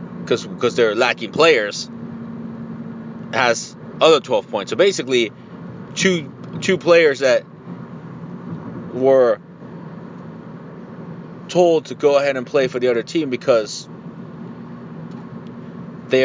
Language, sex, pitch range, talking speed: English, male, 150-200 Hz, 100 wpm